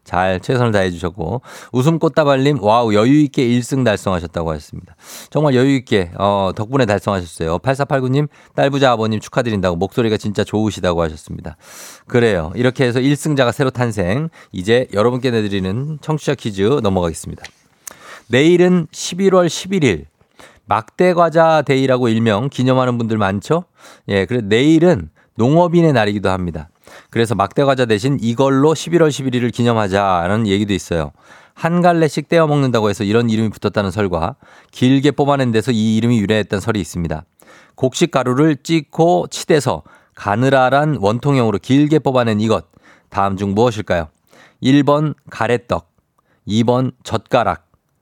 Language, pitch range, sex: Korean, 100-140 Hz, male